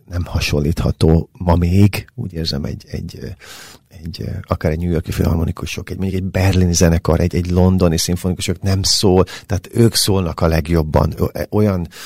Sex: male